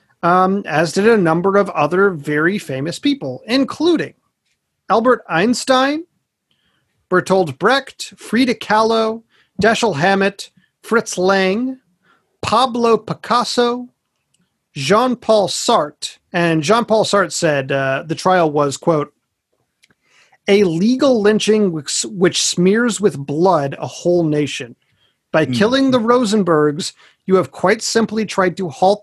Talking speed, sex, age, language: 115 wpm, male, 40-59, English